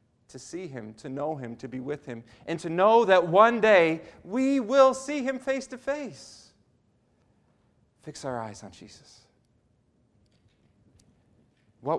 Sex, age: male, 40-59